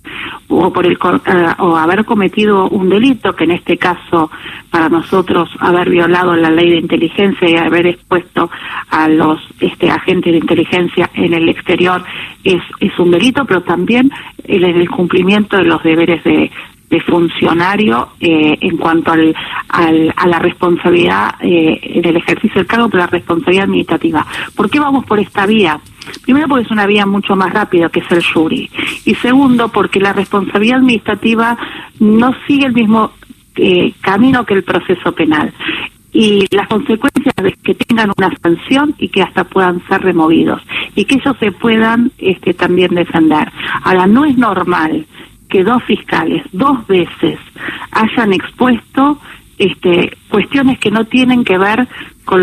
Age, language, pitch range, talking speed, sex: 40-59, Spanish, 175-230 Hz, 160 wpm, female